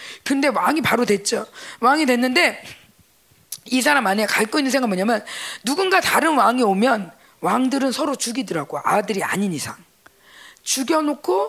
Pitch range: 205-295 Hz